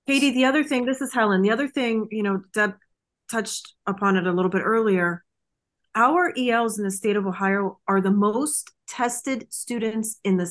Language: English